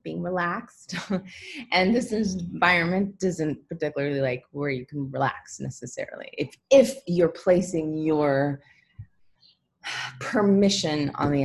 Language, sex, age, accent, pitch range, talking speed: English, female, 30-49, American, 140-175 Hz, 110 wpm